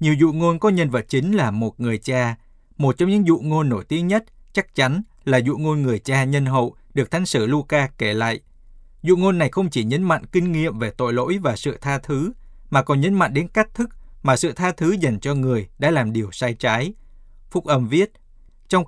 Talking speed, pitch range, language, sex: 230 wpm, 125-165 Hz, Vietnamese, male